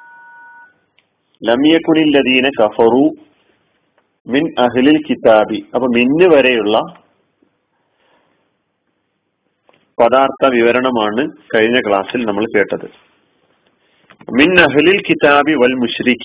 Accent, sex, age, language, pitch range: native, male, 40-59, Malayalam, 120-155 Hz